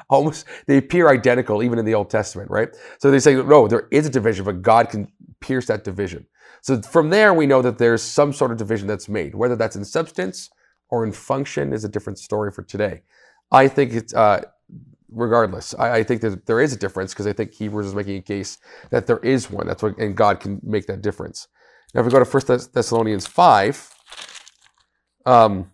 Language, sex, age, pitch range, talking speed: English, male, 40-59, 100-135 Hz, 215 wpm